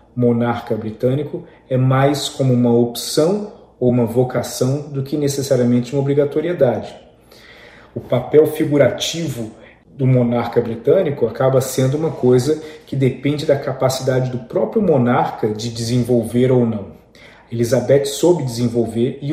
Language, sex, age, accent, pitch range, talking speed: Portuguese, male, 40-59, Brazilian, 120-140 Hz, 125 wpm